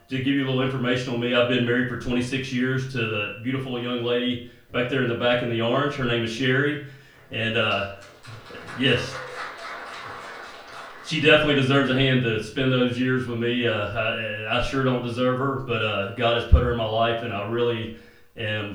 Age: 40-59